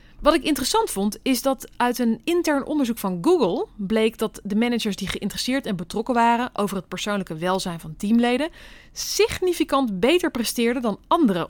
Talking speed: 165 wpm